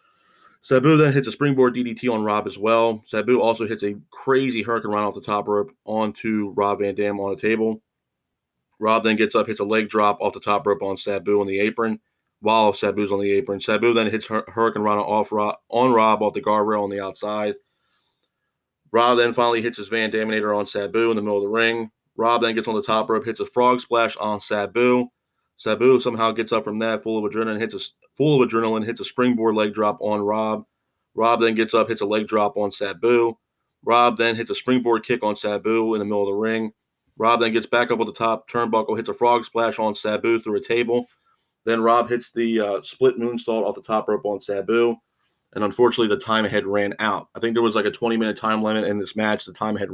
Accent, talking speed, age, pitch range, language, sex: American, 230 wpm, 30-49, 105-115 Hz, English, male